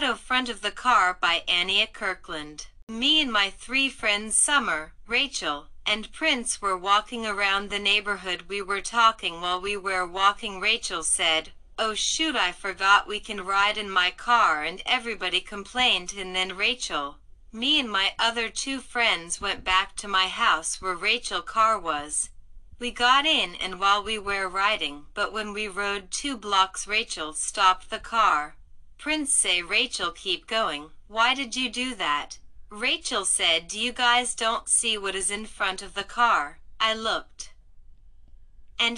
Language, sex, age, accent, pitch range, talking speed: English, female, 40-59, American, 185-235 Hz, 165 wpm